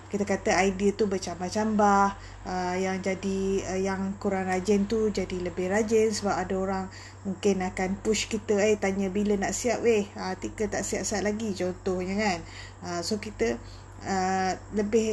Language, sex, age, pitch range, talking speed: Malay, female, 20-39, 185-210 Hz, 160 wpm